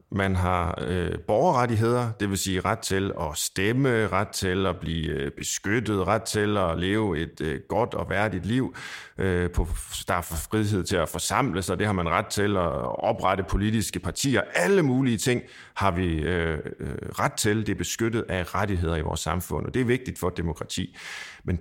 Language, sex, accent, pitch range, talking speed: Danish, male, native, 90-115 Hz, 175 wpm